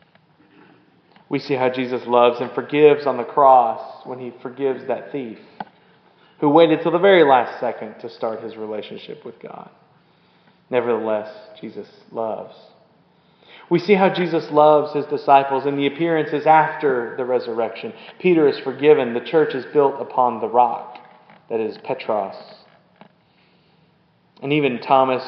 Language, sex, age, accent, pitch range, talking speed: English, male, 30-49, American, 125-160 Hz, 140 wpm